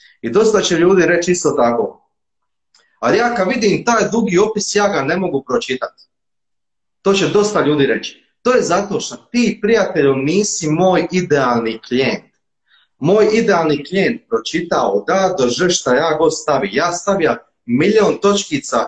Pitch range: 140-200 Hz